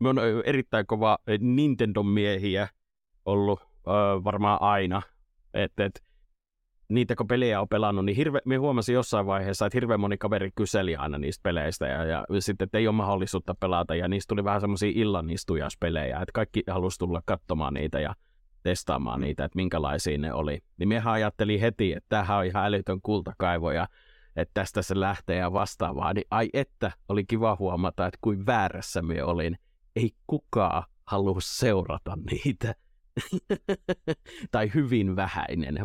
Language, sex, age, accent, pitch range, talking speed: Finnish, male, 30-49, native, 90-105 Hz, 150 wpm